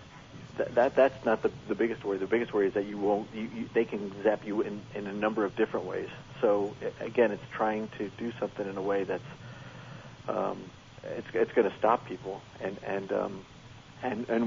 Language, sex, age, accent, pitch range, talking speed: English, male, 50-69, American, 100-120 Hz, 210 wpm